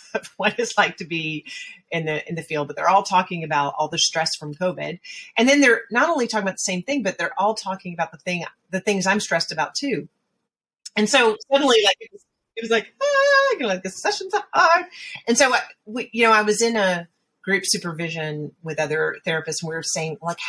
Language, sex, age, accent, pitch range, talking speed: English, female, 30-49, American, 155-225 Hz, 235 wpm